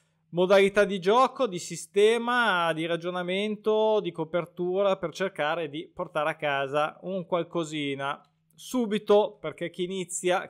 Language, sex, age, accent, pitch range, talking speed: Italian, male, 20-39, native, 150-195 Hz, 120 wpm